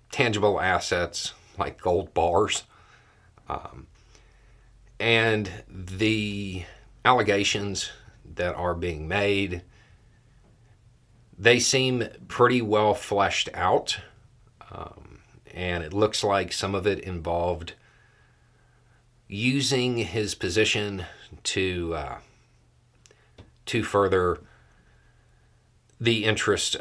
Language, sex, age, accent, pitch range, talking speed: English, male, 40-59, American, 95-120 Hz, 85 wpm